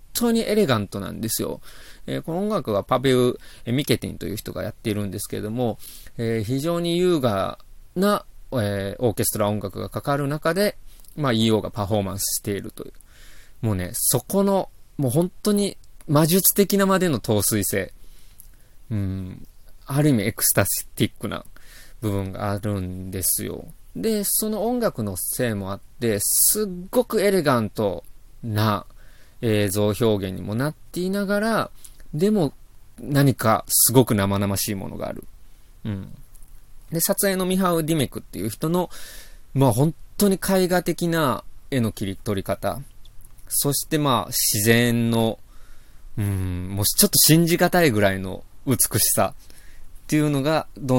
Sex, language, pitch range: male, Japanese, 100-165 Hz